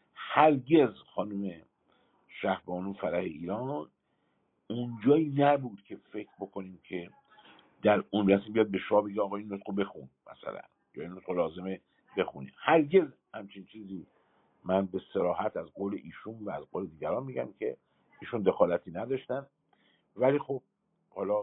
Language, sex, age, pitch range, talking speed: Persian, male, 50-69, 100-135 Hz, 130 wpm